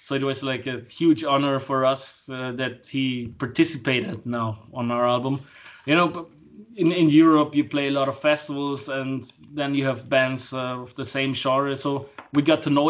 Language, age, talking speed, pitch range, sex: English, 20-39, 200 wpm, 130-150 Hz, male